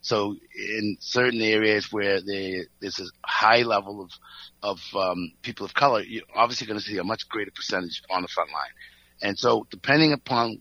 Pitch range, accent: 95-120 Hz, American